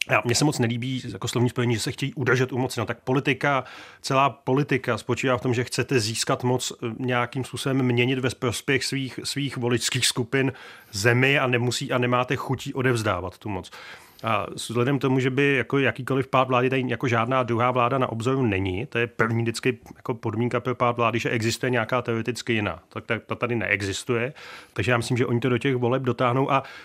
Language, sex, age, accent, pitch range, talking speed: Czech, male, 30-49, native, 115-135 Hz, 205 wpm